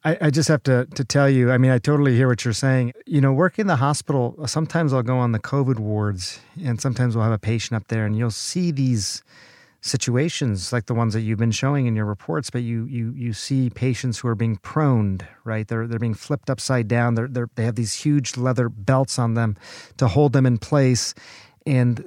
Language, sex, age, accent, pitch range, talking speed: English, male, 40-59, American, 120-140 Hz, 230 wpm